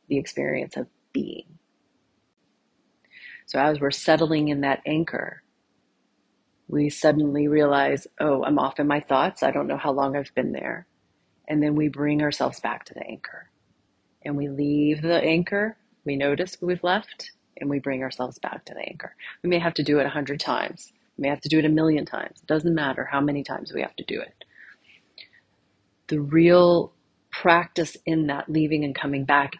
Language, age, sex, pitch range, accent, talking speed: English, 30-49, female, 140-155 Hz, American, 185 wpm